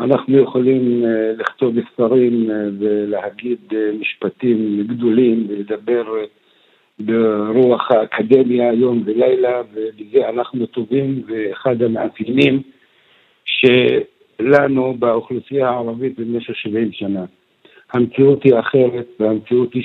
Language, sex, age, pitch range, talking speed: Hebrew, male, 60-79, 115-135 Hz, 80 wpm